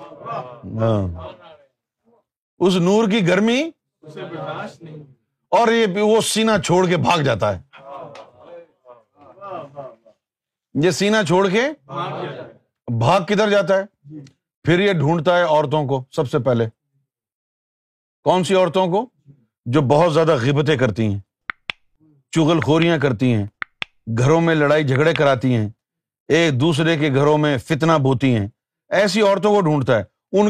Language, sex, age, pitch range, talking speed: Urdu, male, 50-69, 135-200 Hz, 125 wpm